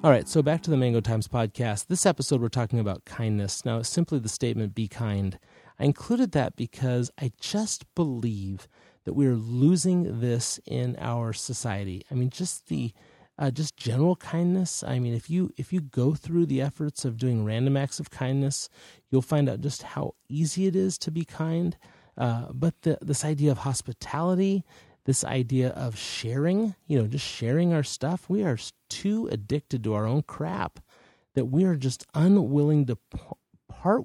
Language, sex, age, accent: English, male, 30-49, American